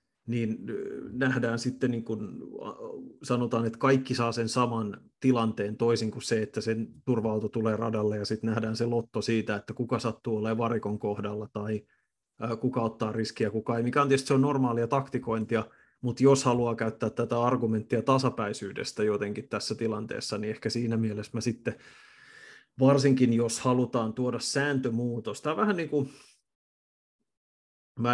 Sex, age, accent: male, 30-49, native